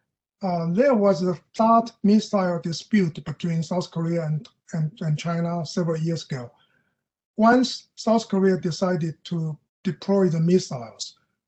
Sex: male